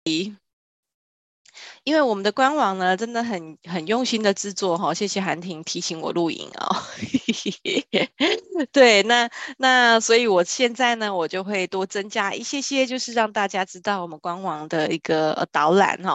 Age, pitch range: 20-39, 180-230 Hz